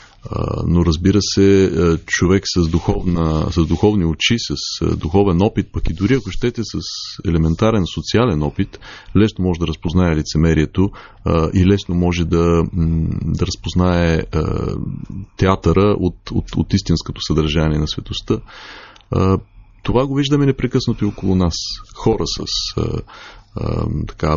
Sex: male